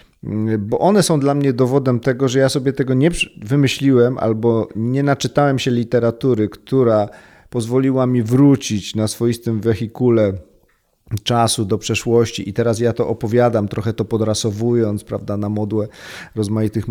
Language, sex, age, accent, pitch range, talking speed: Polish, male, 40-59, native, 110-130 Hz, 140 wpm